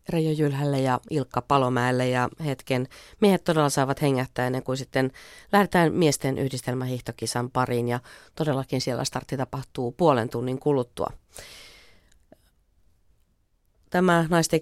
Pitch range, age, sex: 125-155 Hz, 30-49, female